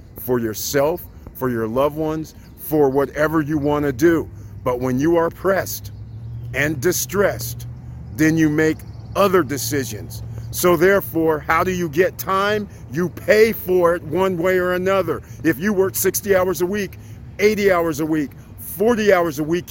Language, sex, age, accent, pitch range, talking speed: English, male, 50-69, American, 120-175 Hz, 165 wpm